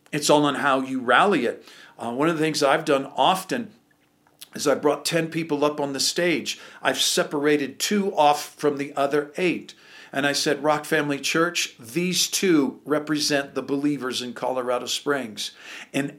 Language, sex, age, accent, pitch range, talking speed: English, male, 50-69, American, 135-175 Hz, 175 wpm